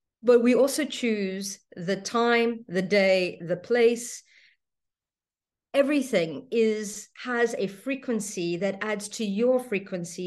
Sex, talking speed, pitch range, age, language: female, 115 wpm, 195-245 Hz, 50-69, English